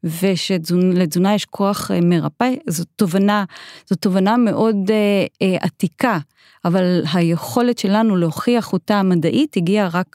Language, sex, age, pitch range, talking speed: Hebrew, female, 30-49, 175-230 Hz, 105 wpm